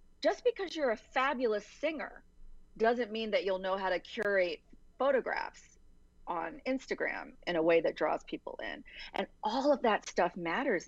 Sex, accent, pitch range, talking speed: female, American, 170-255 Hz, 165 wpm